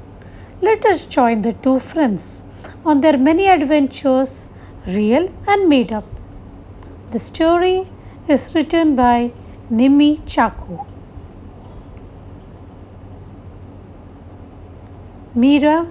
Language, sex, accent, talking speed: English, female, Indian, 85 wpm